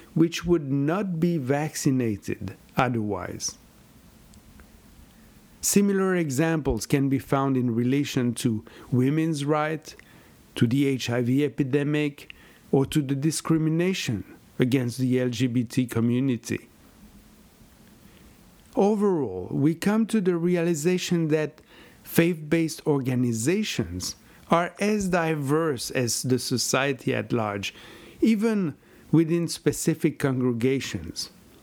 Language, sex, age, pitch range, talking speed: English, male, 50-69, 125-165 Hz, 95 wpm